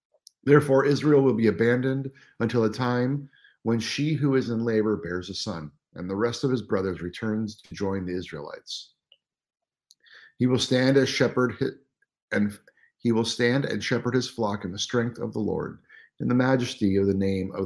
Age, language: 50-69, English